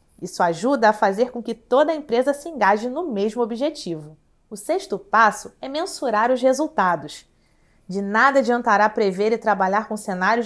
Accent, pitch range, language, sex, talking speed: Brazilian, 210-275 Hz, Portuguese, female, 165 wpm